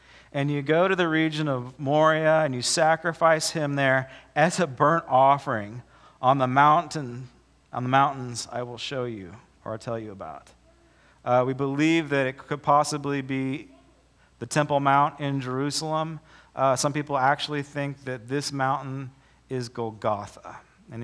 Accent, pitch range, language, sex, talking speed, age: American, 125-160 Hz, English, male, 160 wpm, 40-59